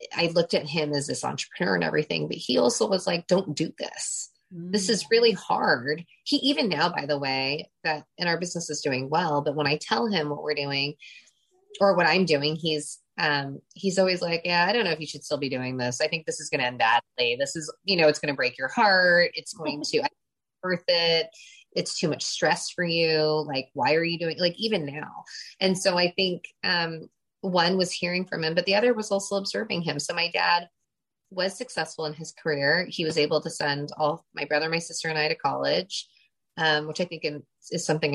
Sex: female